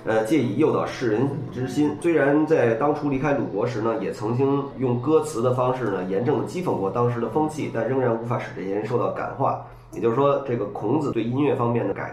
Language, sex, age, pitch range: Chinese, male, 20-39, 115-145 Hz